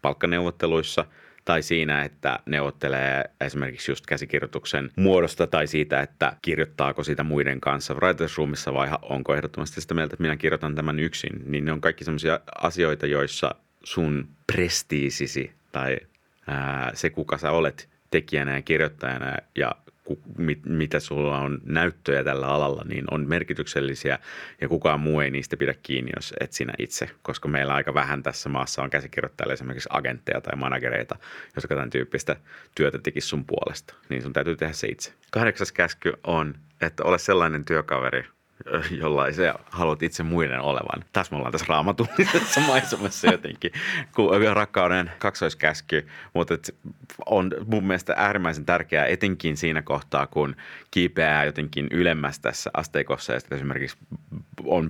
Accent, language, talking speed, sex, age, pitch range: native, Finnish, 145 wpm, male, 30-49, 70-80 Hz